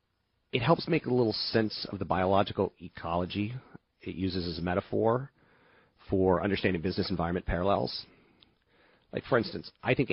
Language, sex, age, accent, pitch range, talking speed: English, male, 30-49, American, 90-110 Hz, 150 wpm